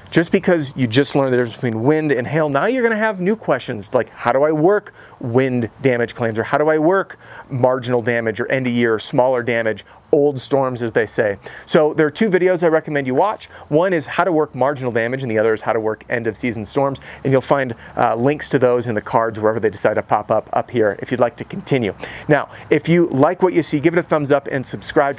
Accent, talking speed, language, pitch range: American, 255 wpm, English, 120-150 Hz